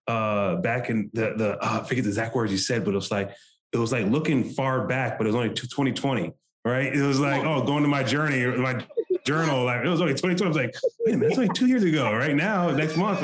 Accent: American